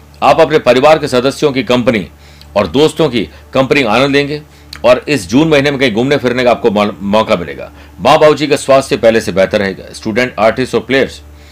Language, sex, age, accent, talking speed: Hindi, male, 60-79, native, 200 wpm